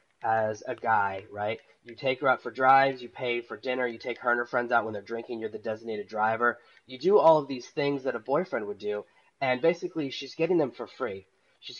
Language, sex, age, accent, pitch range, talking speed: English, male, 20-39, American, 115-140 Hz, 240 wpm